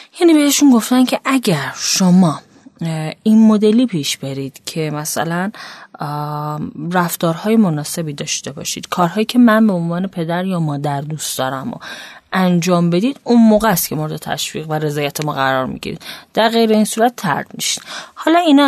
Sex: female